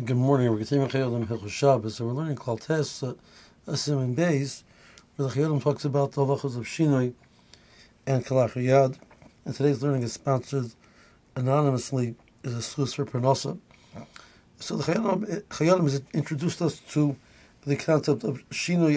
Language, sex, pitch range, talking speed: English, male, 130-155 Hz, 145 wpm